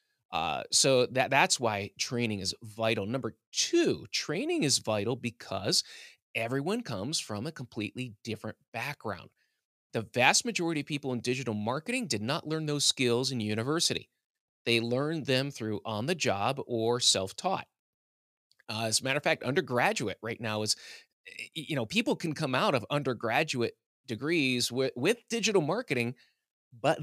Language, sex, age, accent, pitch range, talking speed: English, male, 30-49, American, 115-150 Hz, 155 wpm